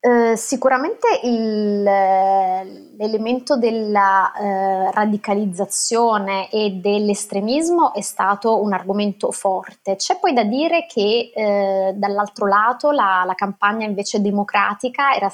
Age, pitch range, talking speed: 20-39, 195-225 Hz, 110 wpm